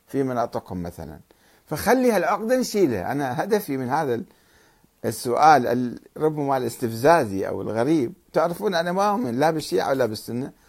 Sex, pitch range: male, 120-195 Hz